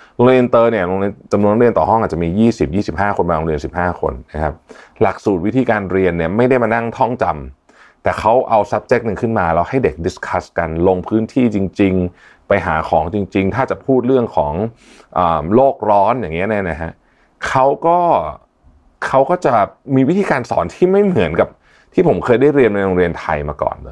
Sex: male